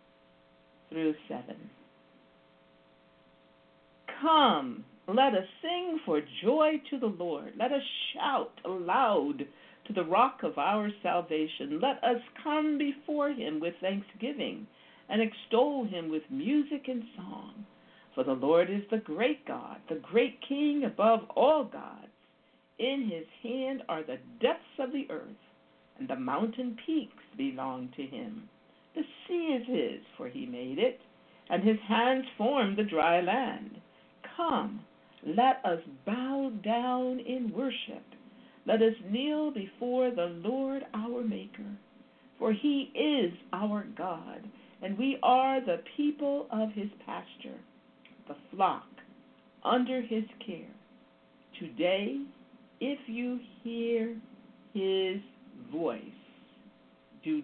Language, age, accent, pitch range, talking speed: English, 60-79, American, 195-260 Hz, 125 wpm